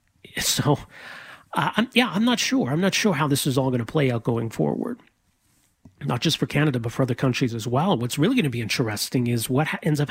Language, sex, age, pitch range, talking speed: English, male, 30-49, 120-150 Hz, 230 wpm